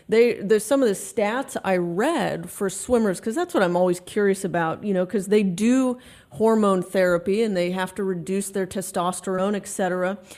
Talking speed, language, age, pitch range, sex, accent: 190 wpm, English, 30-49, 190-240 Hz, female, American